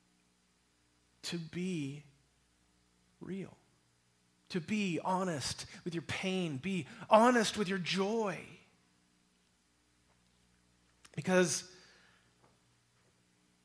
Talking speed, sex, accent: 65 wpm, male, American